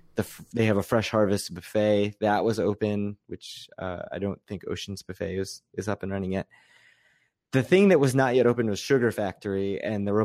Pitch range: 95-115 Hz